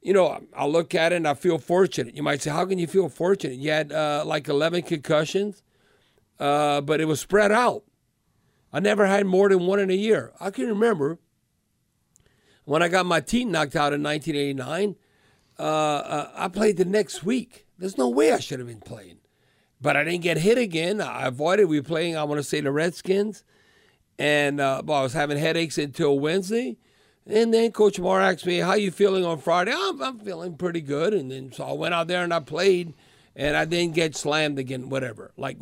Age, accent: 50-69, American